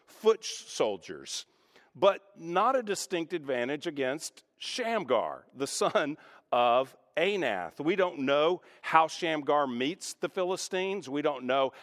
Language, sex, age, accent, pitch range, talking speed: English, male, 50-69, American, 135-195 Hz, 120 wpm